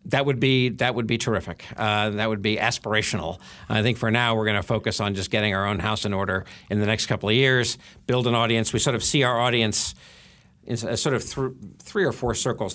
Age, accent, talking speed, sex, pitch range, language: 50-69, American, 245 wpm, male, 105-130 Hz, English